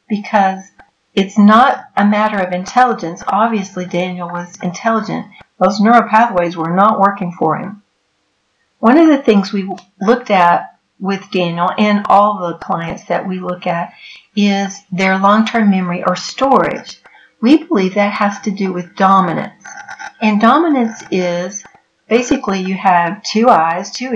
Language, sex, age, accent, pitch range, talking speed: English, female, 60-79, American, 185-225 Hz, 145 wpm